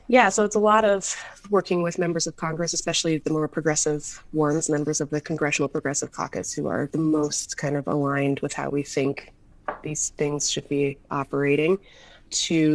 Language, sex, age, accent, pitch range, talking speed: English, female, 20-39, American, 145-170 Hz, 185 wpm